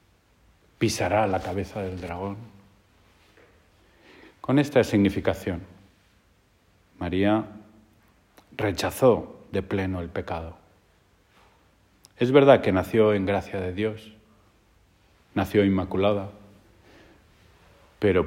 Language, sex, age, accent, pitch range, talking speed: Spanish, male, 40-59, Spanish, 95-105 Hz, 80 wpm